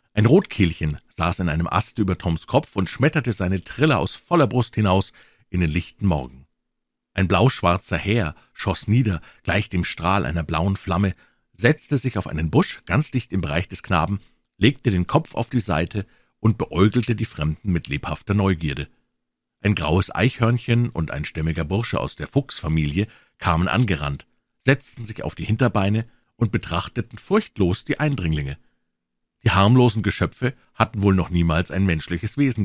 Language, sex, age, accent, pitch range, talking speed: German, male, 50-69, German, 85-115 Hz, 160 wpm